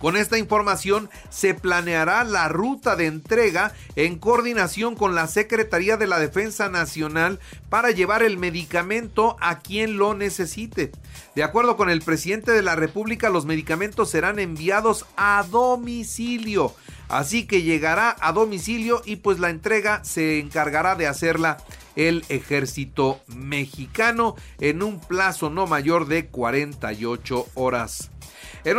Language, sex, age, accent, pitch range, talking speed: Spanish, male, 40-59, Mexican, 155-215 Hz, 135 wpm